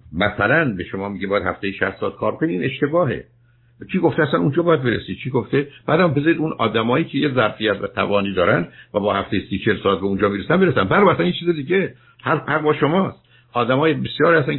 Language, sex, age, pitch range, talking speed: Persian, male, 60-79, 120-160 Hz, 200 wpm